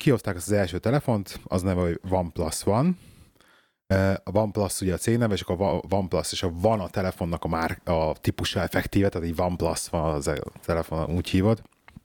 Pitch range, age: 85-105 Hz, 30-49